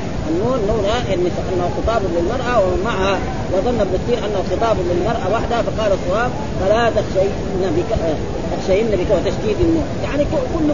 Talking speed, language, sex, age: 140 wpm, Arabic, female, 30-49